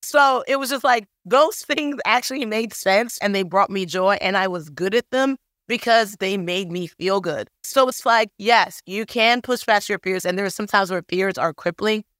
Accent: American